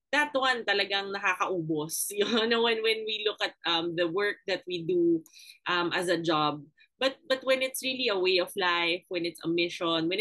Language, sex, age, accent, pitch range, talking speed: Filipino, female, 20-39, native, 170-230 Hz, 205 wpm